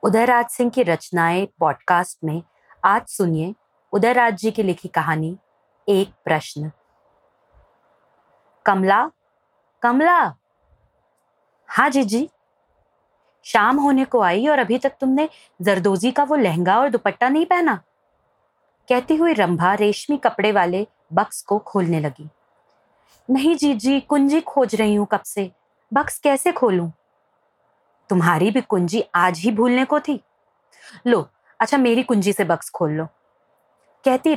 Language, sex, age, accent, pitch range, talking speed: Hindi, female, 30-49, native, 185-250 Hz, 130 wpm